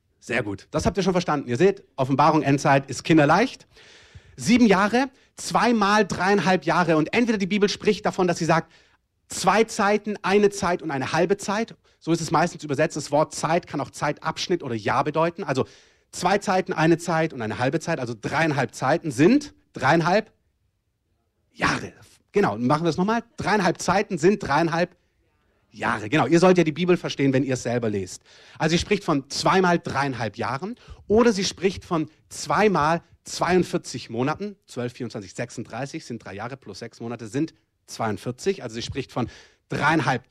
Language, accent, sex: German, German, male